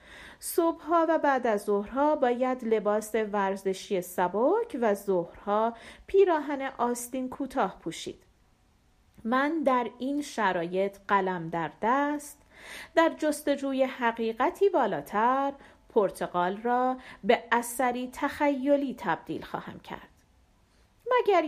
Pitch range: 200-285 Hz